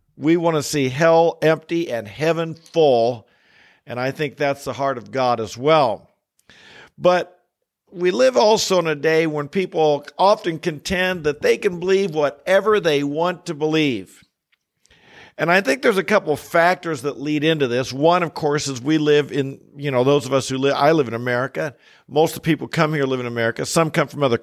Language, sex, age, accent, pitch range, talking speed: English, male, 50-69, American, 140-175 Hz, 200 wpm